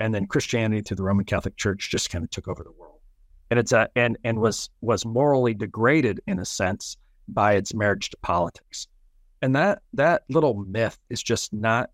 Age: 40-59